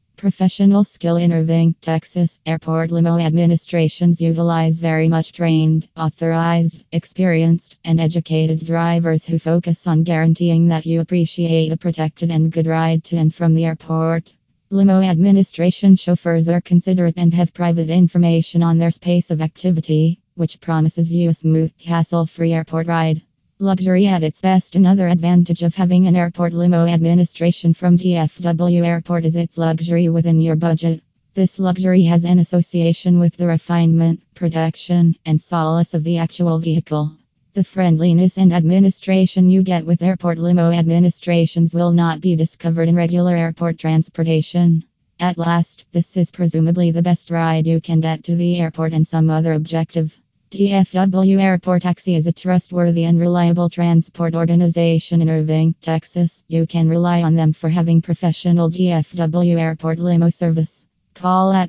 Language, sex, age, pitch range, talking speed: English, female, 20-39, 165-175 Hz, 150 wpm